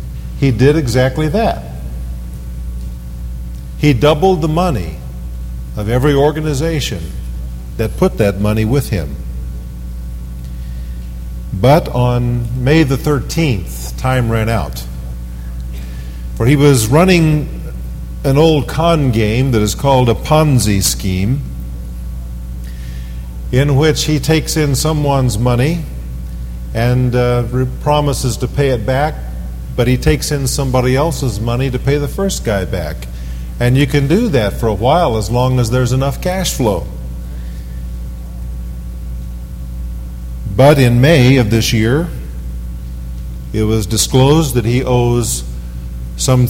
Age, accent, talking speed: 50-69, American, 120 wpm